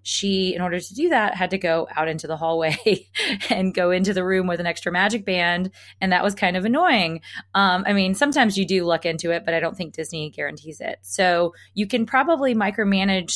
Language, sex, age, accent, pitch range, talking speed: English, female, 20-39, American, 150-185 Hz, 225 wpm